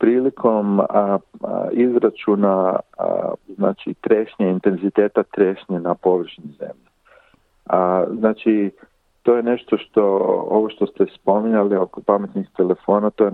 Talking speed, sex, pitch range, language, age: 115 wpm, male, 95-110 Hz, Croatian, 50-69